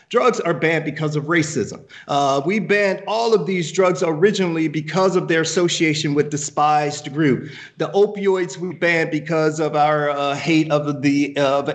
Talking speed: 175 wpm